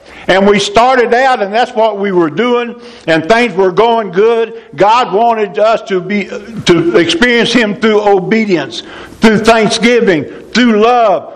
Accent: American